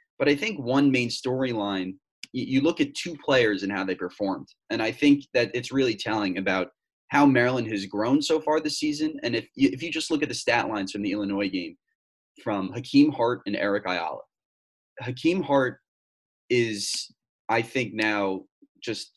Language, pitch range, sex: English, 110-175 Hz, male